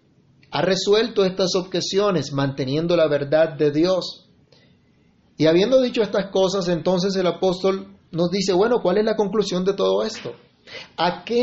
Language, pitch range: Spanish, 155-200 Hz